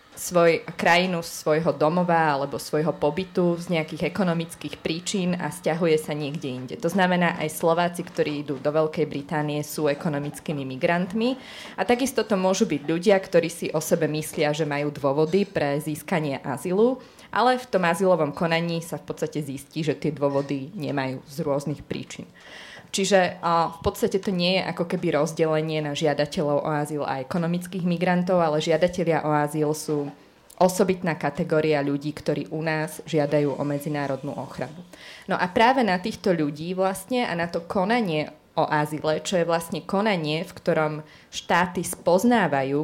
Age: 20-39